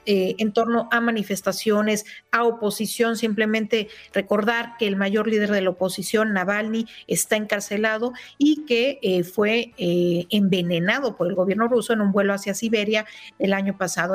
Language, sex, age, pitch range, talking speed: Spanish, female, 40-59, 205-245 Hz, 155 wpm